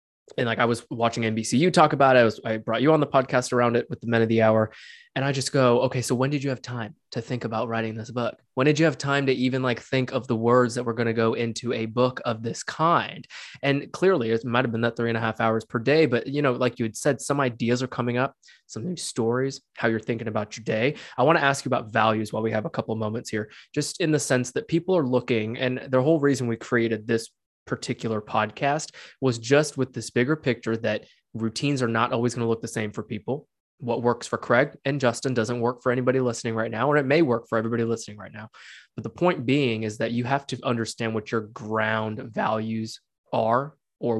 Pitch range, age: 115-135 Hz, 20-39